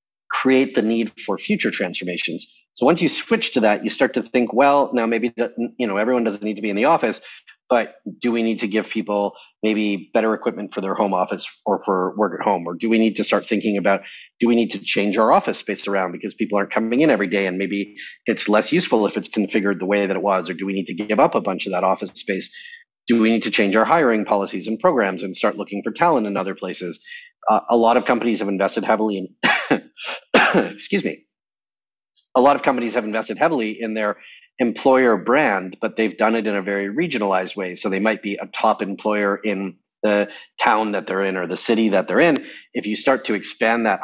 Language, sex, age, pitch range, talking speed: English, male, 30-49, 100-115 Hz, 230 wpm